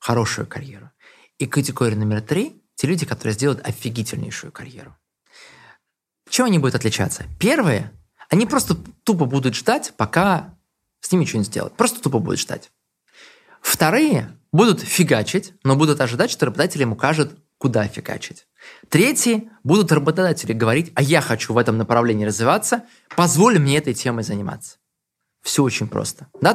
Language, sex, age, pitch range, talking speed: Russian, male, 20-39, 130-190 Hz, 150 wpm